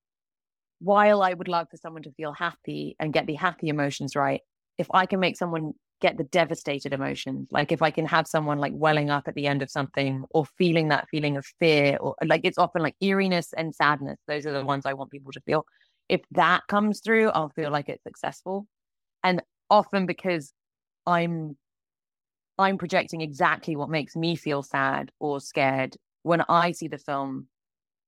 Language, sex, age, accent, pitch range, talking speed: English, female, 20-39, British, 140-175 Hz, 190 wpm